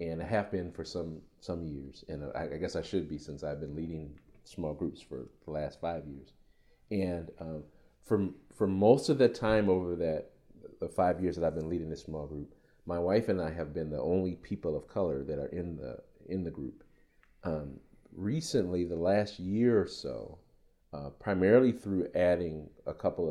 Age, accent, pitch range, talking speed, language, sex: 40-59, American, 80-110 Hz, 200 wpm, English, male